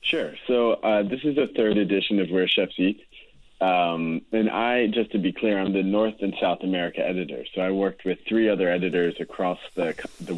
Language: English